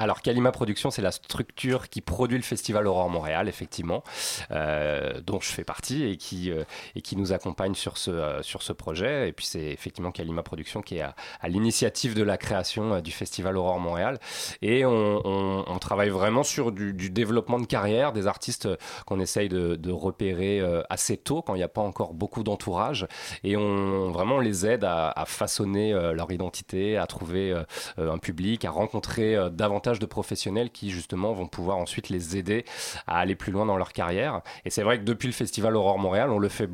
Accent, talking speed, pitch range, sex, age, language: French, 210 wpm, 90-110 Hz, male, 30-49, French